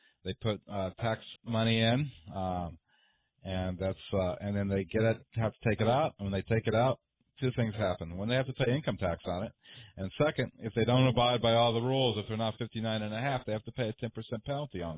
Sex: male